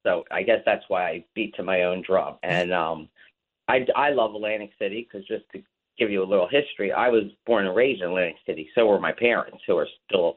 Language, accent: English, American